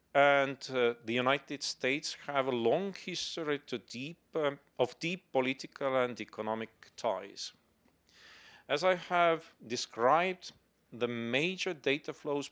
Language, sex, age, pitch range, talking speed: English, male, 40-59, 115-150 Hz, 115 wpm